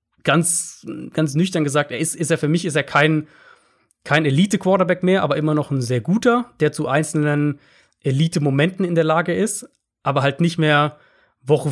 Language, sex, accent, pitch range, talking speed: German, male, German, 130-155 Hz, 180 wpm